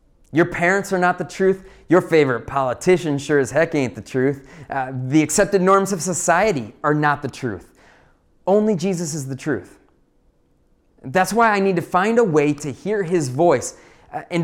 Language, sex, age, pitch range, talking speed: English, male, 30-49, 140-185 Hz, 180 wpm